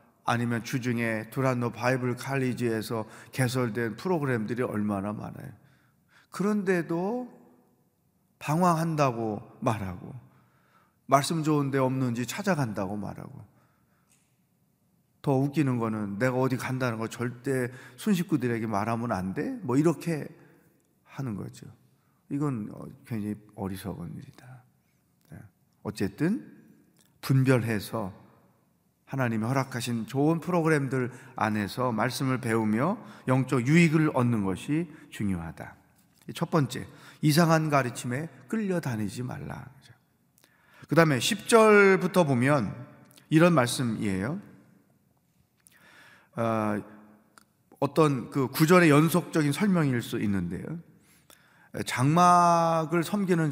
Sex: male